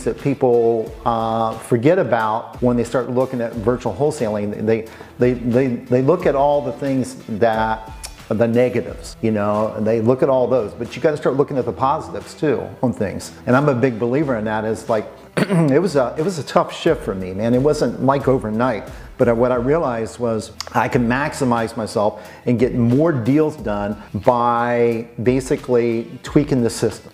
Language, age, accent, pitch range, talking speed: English, 40-59, American, 110-130 Hz, 195 wpm